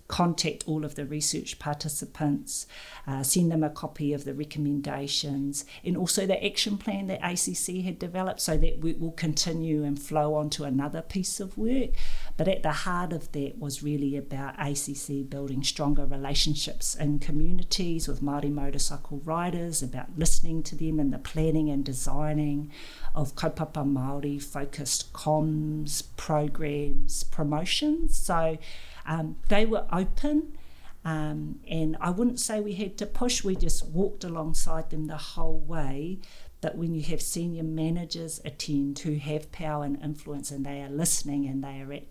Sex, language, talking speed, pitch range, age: female, English, 160 wpm, 145-180 Hz, 50-69